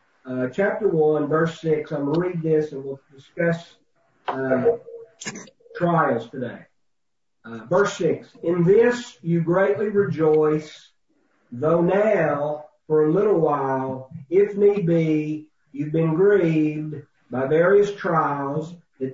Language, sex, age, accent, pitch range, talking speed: English, male, 40-59, American, 150-190 Hz, 125 wpm